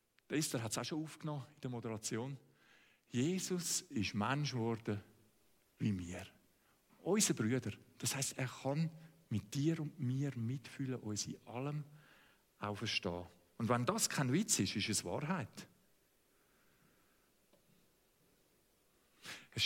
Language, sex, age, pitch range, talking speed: German, male, 50-69, 125-190 Hz, 130 wpm